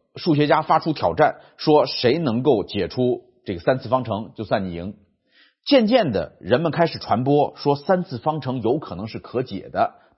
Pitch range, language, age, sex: 125-185 Hz, Chinese, 30-49, male